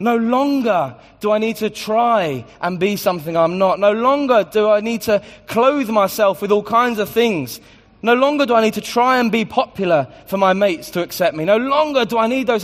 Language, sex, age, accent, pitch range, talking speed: English, male, 20-39, British, 145-230 Hz, 225 wpm